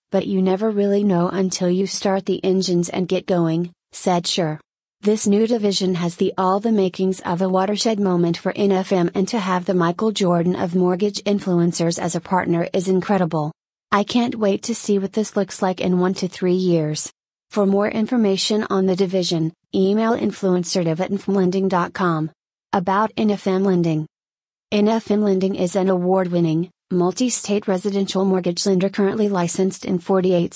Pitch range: 180-200 Hz